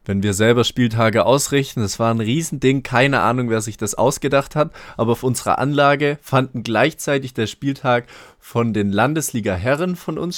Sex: male